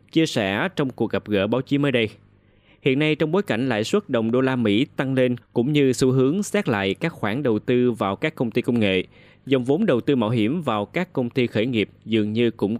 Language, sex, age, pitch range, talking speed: Vietnamese, male, 20-39, 105-140 Hz, 255 wpm